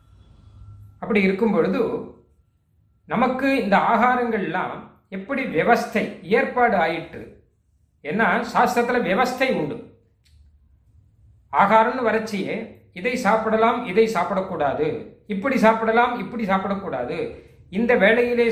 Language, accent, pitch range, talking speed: Tamil, native, 150-235 Hz, 80 wpm